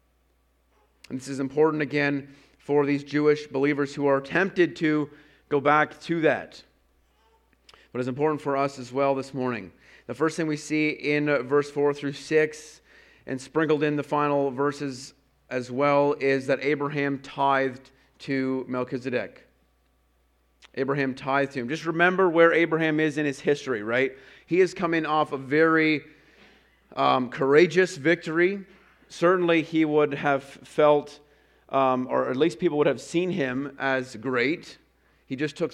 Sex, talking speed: male, 155 wpm